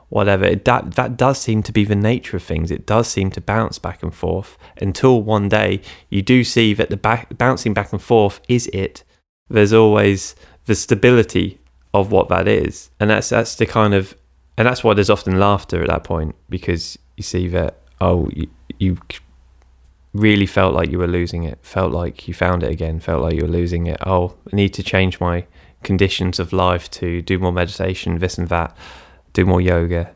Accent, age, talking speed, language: British, 20-39, 200 wpm, English